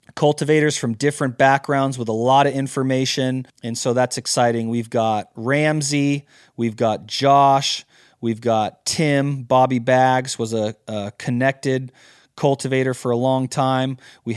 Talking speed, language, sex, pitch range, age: 140 wpm, English, male, 120-140 Hz, 30-49